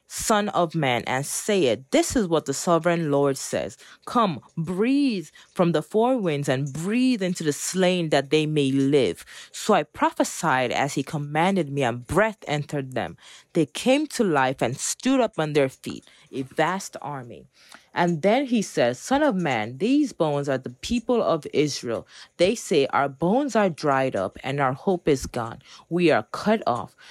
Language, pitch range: English, 140-205 Hz